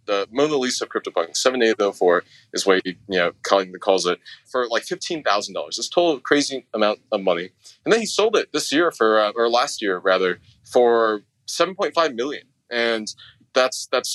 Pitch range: 110-150 Hz